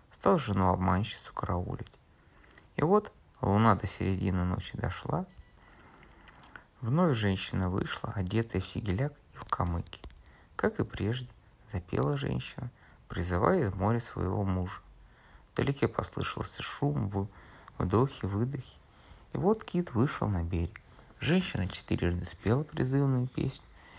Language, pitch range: Russian, 95-130 Hz